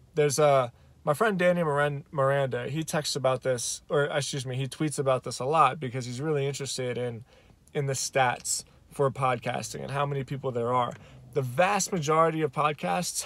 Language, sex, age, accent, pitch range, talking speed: English, male, 20-39, American, 135-170 Hz, 180 wpm